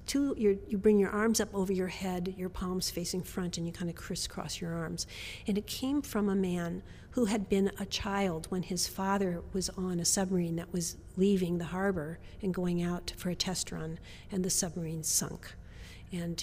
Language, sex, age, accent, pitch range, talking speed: English, female, 50-69, American, 180-210 Hz, 205 wpm